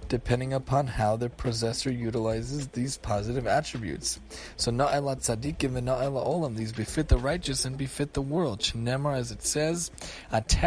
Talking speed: 140 wpm